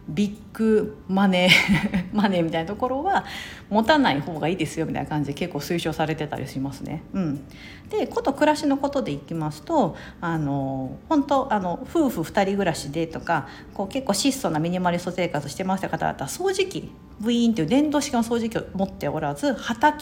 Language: Japanese